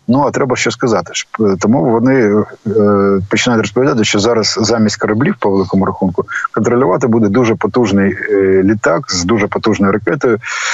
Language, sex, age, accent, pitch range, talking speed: Ukrainian, male, 20-39, native, 100-120 Hz, 150 wpm